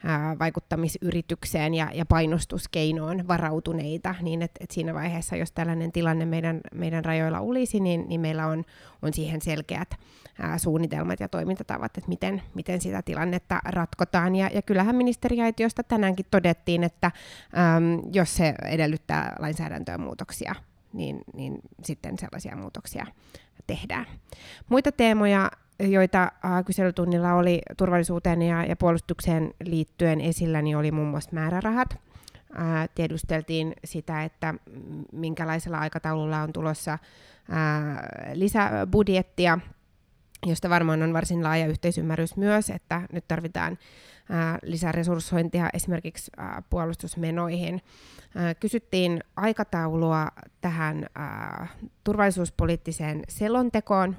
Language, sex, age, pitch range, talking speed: Finnish, female, 20-39, 160-185 Hz, 90 wpm